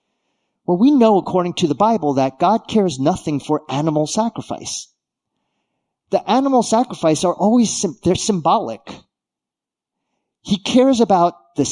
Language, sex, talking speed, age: English, male, 130 wpm, 40-59